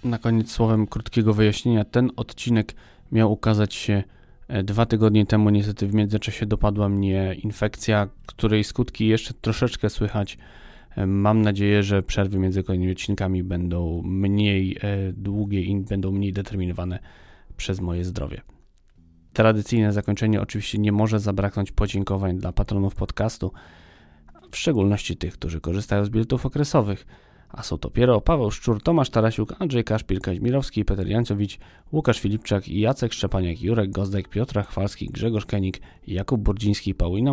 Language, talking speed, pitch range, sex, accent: Polish, 135 wpm, 95-110 Hz, male, native